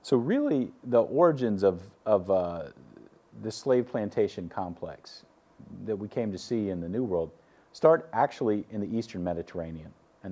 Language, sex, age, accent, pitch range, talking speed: English, male, 40-59, American, 90-110 Hz, 155 wpm